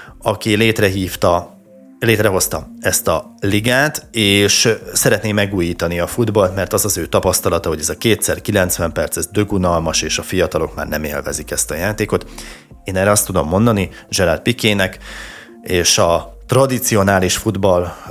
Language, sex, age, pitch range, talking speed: Hungarian, male, 30-49, 95-115 Hz, 140 wpm